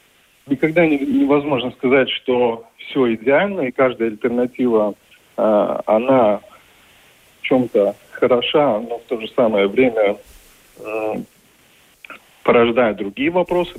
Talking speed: 110 wpm